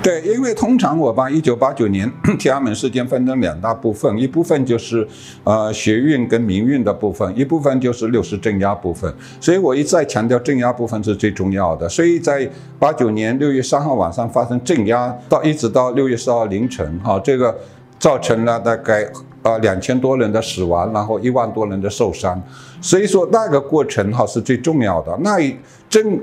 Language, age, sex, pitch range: Chinese, 60-79, male, 110-145 Hz